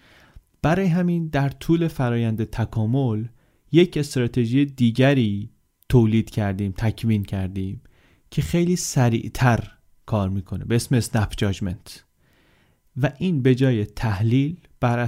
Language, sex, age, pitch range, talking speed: Persian, male, 30-49, 110-140 Hz, 105 wpm